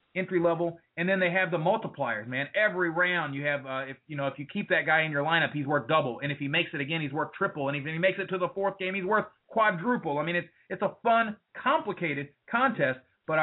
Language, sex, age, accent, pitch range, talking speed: English, male, 30-49, American, 145-190 Hz, 260 wpm